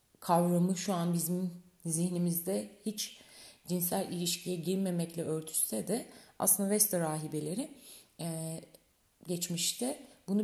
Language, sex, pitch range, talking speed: Turkish, female, 165-220 Hz, 90 wpm